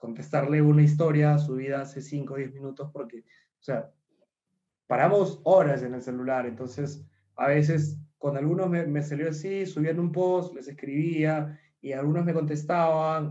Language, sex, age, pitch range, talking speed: Spanish, male, 20-39, 125-150 Hz, 160 wpm